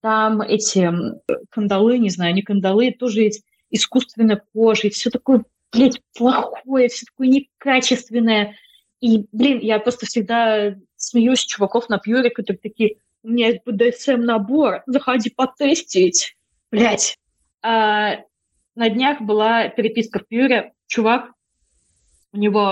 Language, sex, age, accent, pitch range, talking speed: Russian, female, 20-39, native, 210-260 Hz, 125 wpm